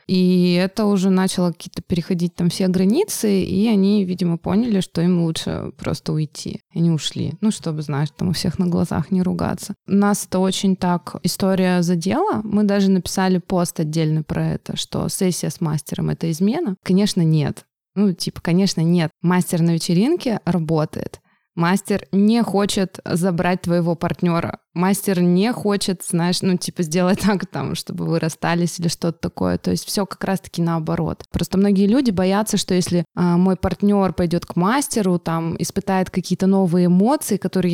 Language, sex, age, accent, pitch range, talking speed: Russian, female, 20-39, native, 170-195 Hz, 165 wpm